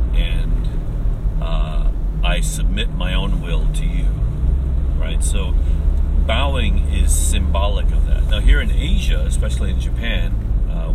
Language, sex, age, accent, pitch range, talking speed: English, male, 40-59, American, 70-80 Hz, 130 wpm